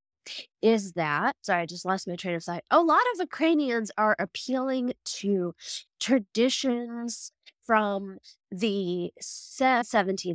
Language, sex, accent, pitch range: English, female, American, 180-260 Hz